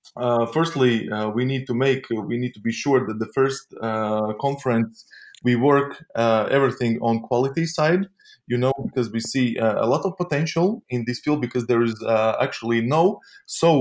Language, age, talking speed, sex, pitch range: German, 20-39, 190 wpm, male, 115-145 Hz